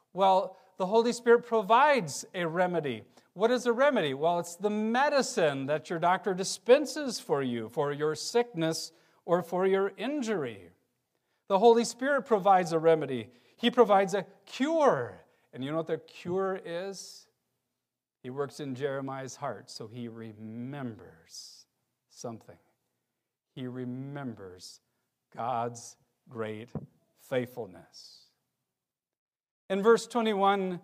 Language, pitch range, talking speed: English, 160-235 Hz, 120 wpm